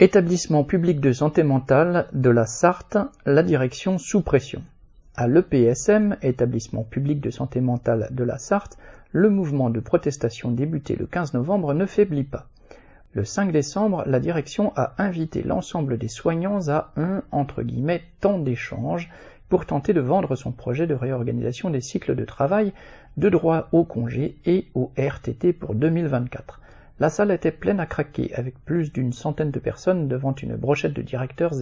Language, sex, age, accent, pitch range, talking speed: French, male, 50-69, French, 125-175 Hz, 165 wpm